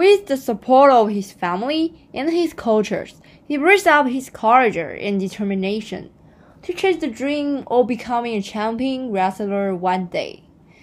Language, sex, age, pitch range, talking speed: English, female, 10-29, 195-265 Hz, 150 wpm